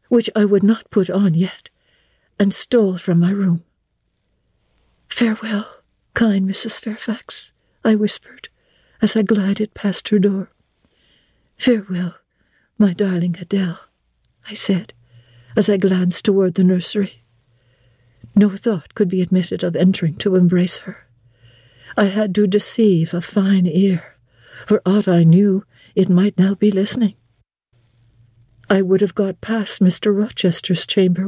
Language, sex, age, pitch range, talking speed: English, female, 60-79, 170-210 Hz, 135 wpm